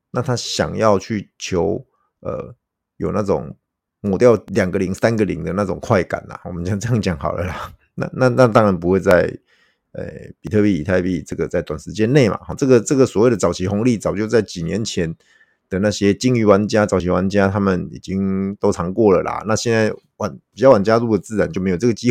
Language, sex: Chinese, male